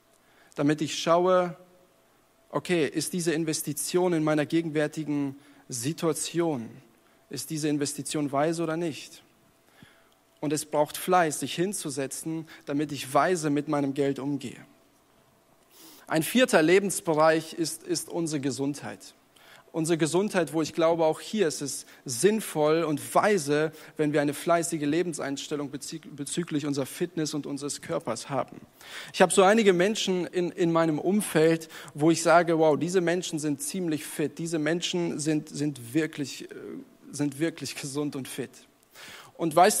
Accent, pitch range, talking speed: German, 145-170 Hz, 135 wpm